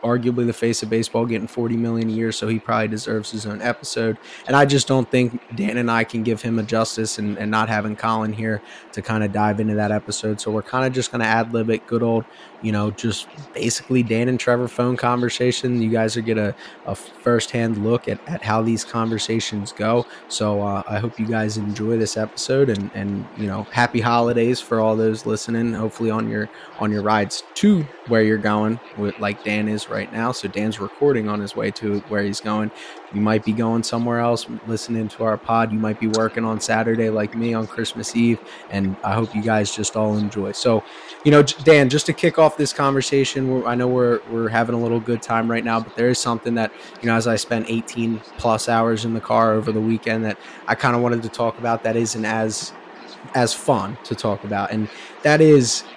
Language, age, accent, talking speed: English, 20-39, American, 225 wpm